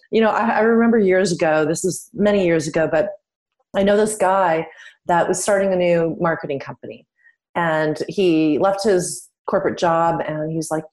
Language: English